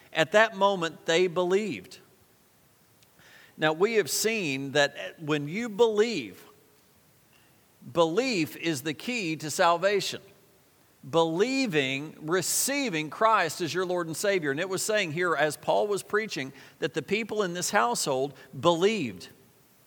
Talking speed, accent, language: 130 wpm, American, English